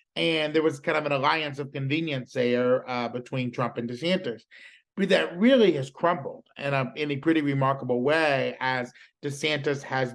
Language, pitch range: English, 125-155 Hz